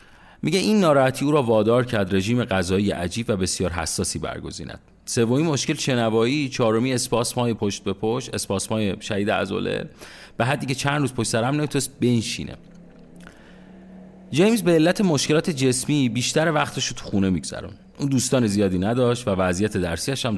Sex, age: male, 30-49